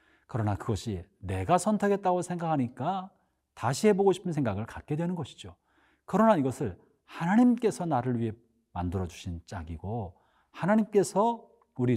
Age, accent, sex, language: 40-59, native, male, Korean